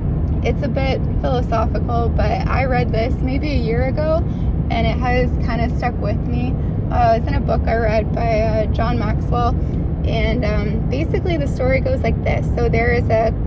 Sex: female